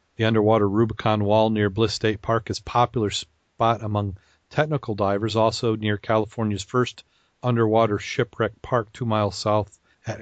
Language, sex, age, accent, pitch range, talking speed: English, male, 40-59, American, 100-115 Hz, 155 wpm